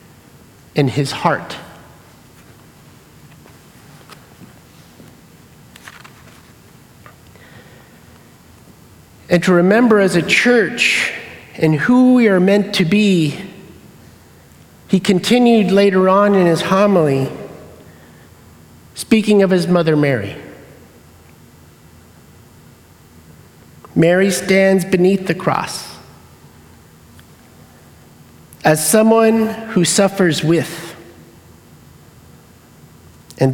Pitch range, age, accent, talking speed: 130-190 Hz, 50-69, American, 70 wpm